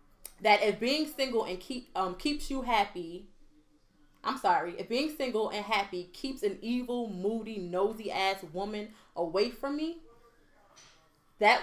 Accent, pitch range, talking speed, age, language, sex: American, 195-280 Hz, 145 wpm, 20-39, English, female